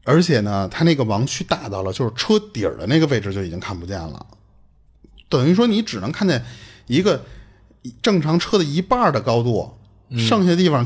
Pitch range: 105-165 Hz